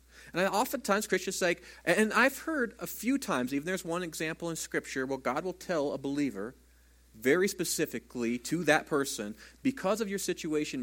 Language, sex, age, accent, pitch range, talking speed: English, male, 40-59, American, 120-195 Hz, 170 wpm